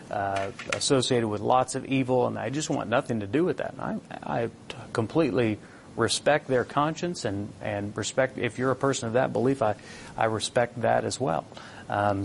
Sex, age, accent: male, 40-59, American